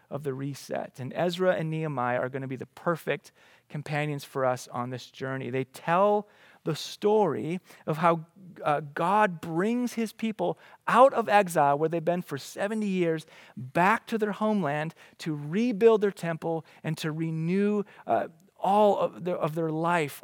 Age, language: 30-49, English